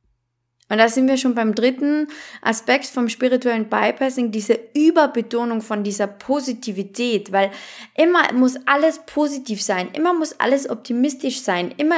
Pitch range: 215-275 Hz